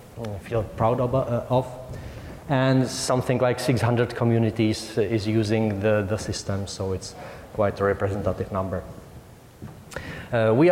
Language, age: English, 30-49